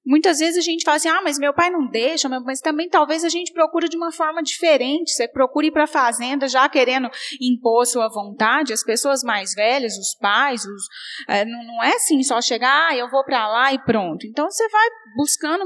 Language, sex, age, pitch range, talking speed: Portuguese, female, 30-49, 235-330 Hz, 220 wpm